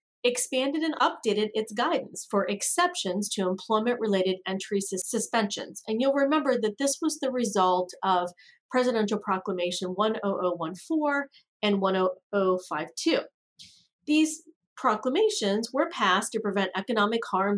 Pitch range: 190-260 Hz